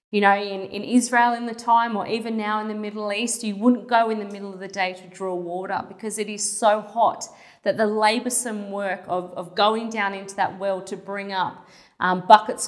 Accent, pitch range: Australian, 195-230 Hz